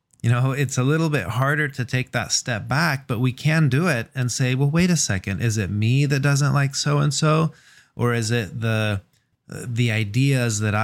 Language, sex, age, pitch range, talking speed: English, male, 30-49, 110-140 Hz, 205 wpm